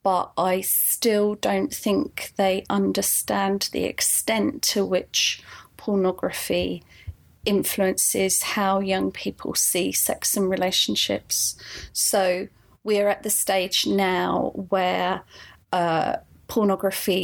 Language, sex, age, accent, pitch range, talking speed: English, female, 30-49, British, 180-205 Hz, 105 wpm